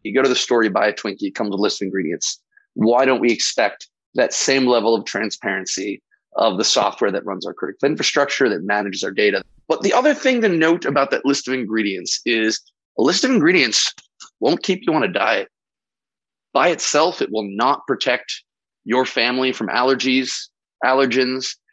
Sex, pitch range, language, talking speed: male, 120-165 Hz, English, 195 wpm